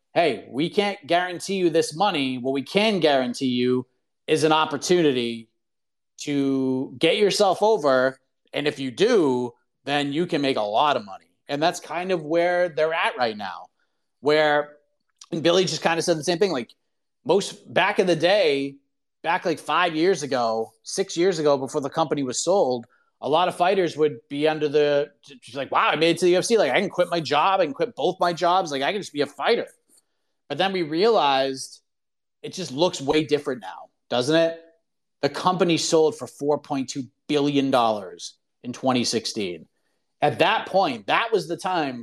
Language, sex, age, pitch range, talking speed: English, male, 30-49, 135-175 Hz, 185 wpm